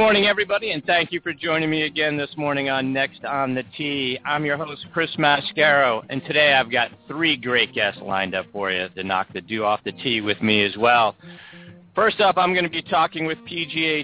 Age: 40-59